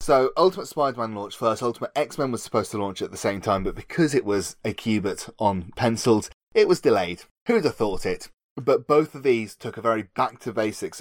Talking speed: 205 wpm